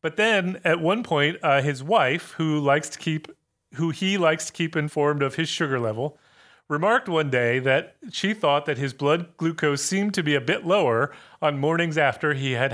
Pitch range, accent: 135-160 Hz, American